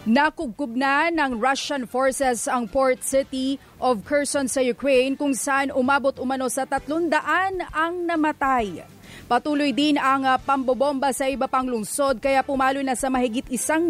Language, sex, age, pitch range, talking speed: English, female, 30-49, 265-295 Hz, 145 wpm